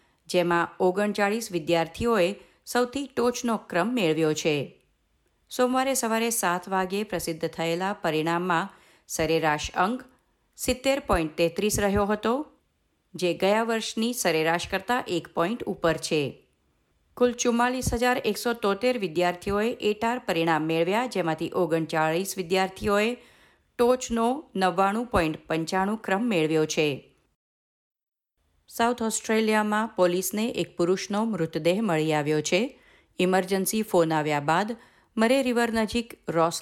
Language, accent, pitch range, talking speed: Gujarati, native, 165-220 Hz, 100 wpm